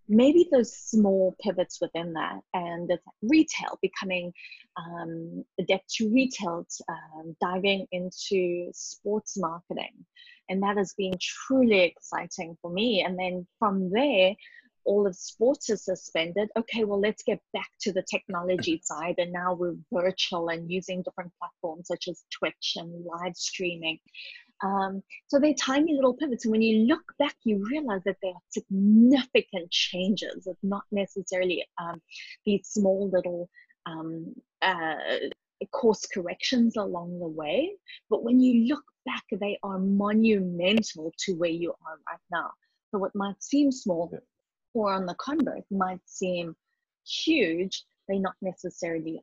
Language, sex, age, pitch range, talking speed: English, female, 20-39, 175-225 Hz, 145 wpm